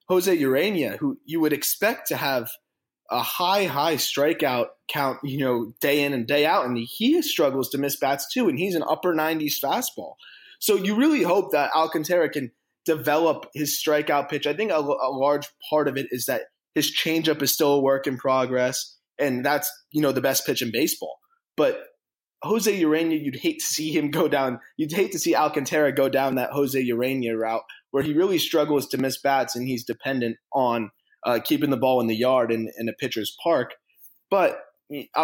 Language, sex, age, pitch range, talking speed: English, male, 20-39, 130-160 Hz, 205 wpm